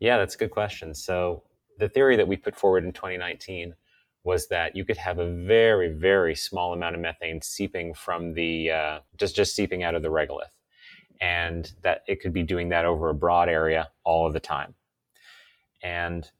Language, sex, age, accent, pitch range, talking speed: English, male, 30-49, American, 80-90 Hz, 195 wpm